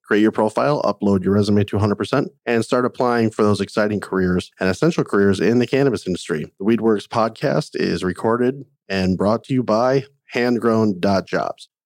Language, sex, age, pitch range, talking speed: English, male, 40-59, 95-125 Hz, 165 wpm